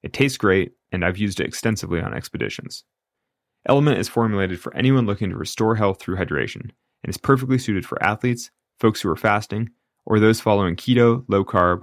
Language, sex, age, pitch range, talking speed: English, male, 30-49, 95-120 Hz, 185 wpm